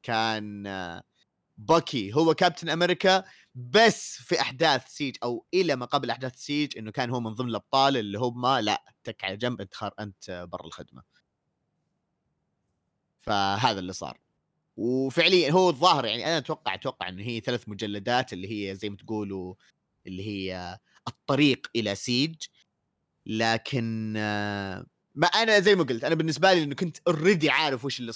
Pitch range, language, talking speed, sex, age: 110-150 Hz, Arabic, 150 wpm, male, 30-49